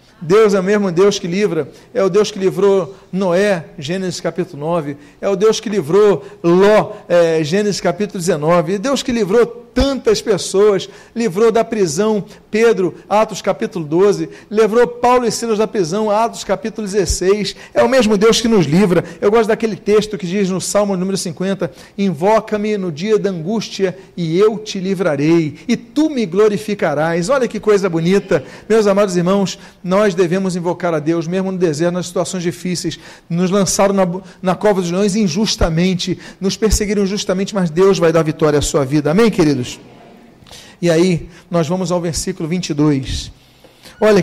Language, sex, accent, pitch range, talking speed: Portuguese, male, Brazilian, 175-210 Hz, 170 wpm